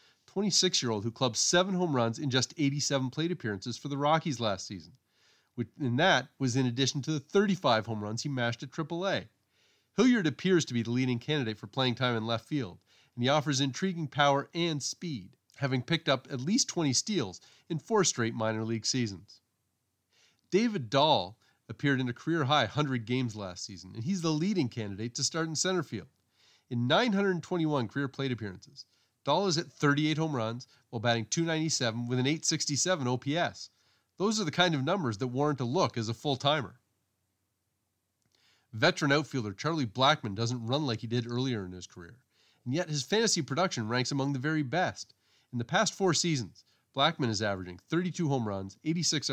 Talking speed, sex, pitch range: 180 wpm, male, 115-155 Hz